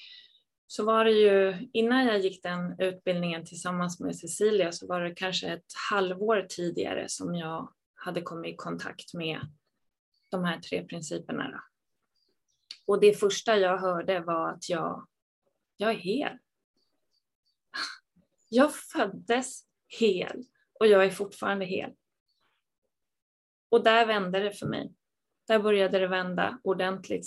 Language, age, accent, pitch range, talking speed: Swedish, 20-39, native, 180-210 Hz, 130 wpm